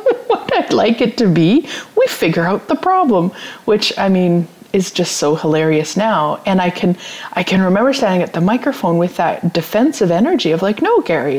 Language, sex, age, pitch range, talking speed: English, female, 30-49, 170-230 Hz, 190 wpm